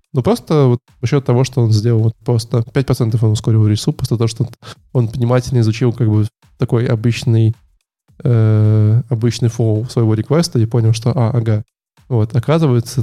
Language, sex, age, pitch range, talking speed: Russian, male, 20-39, 115-135 Hz, 170 wpm